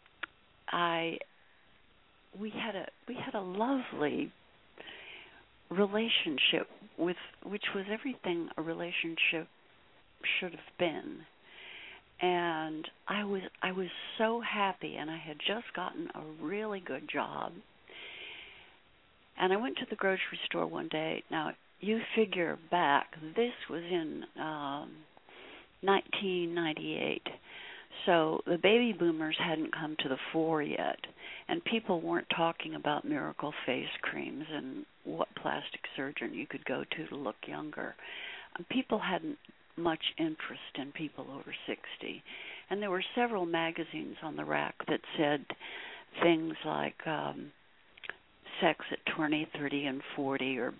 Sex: female